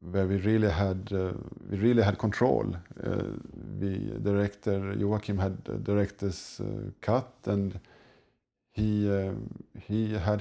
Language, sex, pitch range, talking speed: English, male, 100-115 Hz, 120 wpm